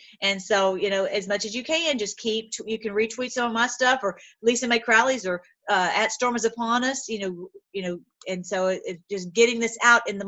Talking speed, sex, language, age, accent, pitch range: 245 wpm, female, English, 40-59, American, 185-235 Hz